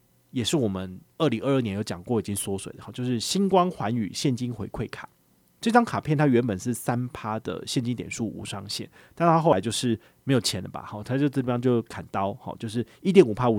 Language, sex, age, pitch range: Chinese, male, 30-49, 105-130 Hz